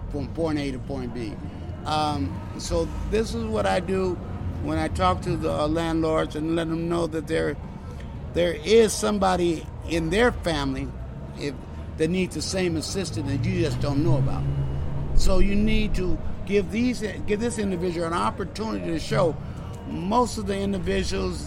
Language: English